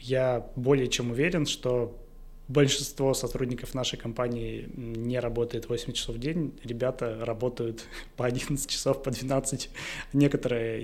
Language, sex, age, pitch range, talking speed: Russian, male, 20-39, 115-135 Hz, 125 wpm